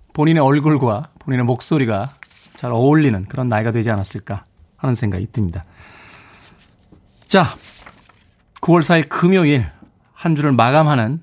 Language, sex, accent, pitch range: Korean, male, native, 110-155 Hz